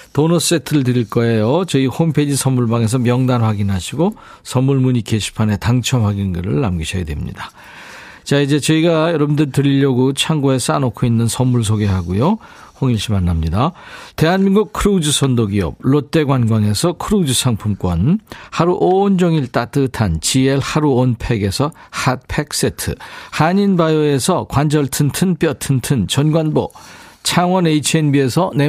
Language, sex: Korean, male